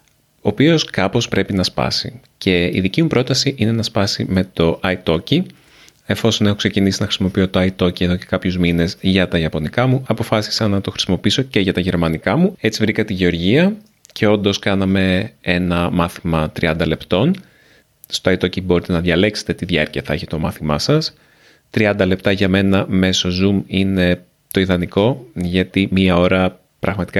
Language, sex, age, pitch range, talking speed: Greek, male, 30-49, 90-115 Hz, 170 wpm